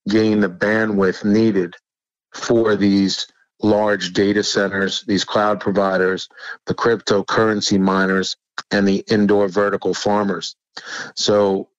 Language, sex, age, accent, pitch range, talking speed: English, male, 50-69, American, 100-110 Hz, 105 wpm